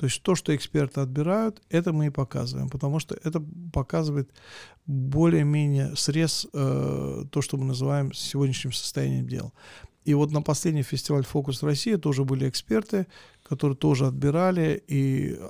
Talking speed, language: 140 wpm, Russian